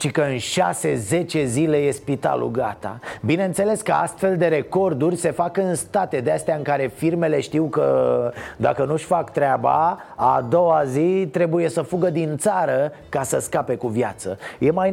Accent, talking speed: native, 170 wpm